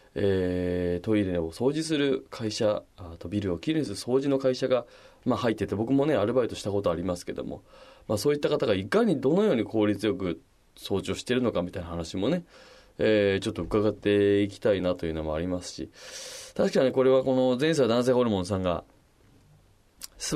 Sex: male